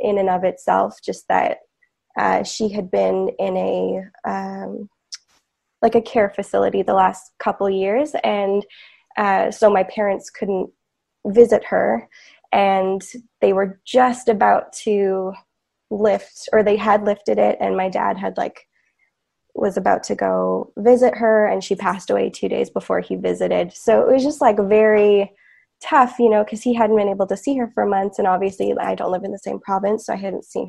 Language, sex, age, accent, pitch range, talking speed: English, female, 10-29, American, 195-235 Hz, 185 wpm